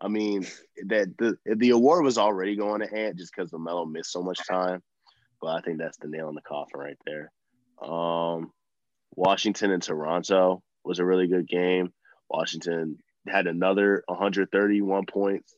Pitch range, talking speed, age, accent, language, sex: 85-95 Hz, 170 wpm, 20-39, American, English, male